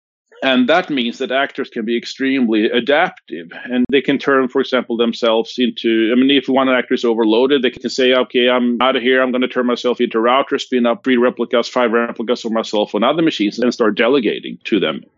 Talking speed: 220 wpm